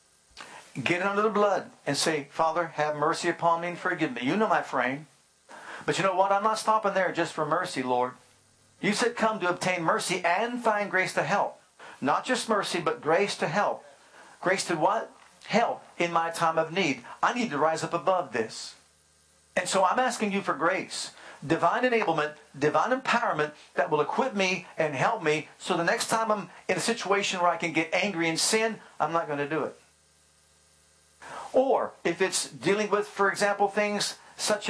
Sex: male